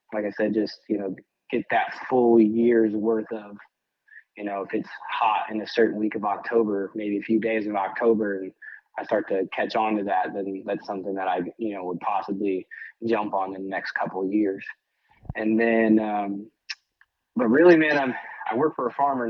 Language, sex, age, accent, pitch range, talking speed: English, male, 20-39, American, 105-125 Hz, 205 wpm